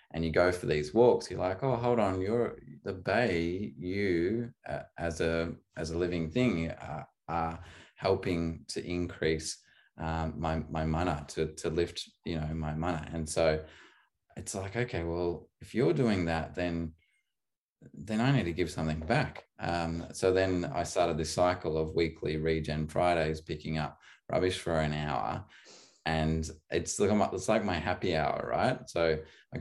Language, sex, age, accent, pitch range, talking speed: English, male, 20-39, Australian, 80-95 Hz, 170 wpm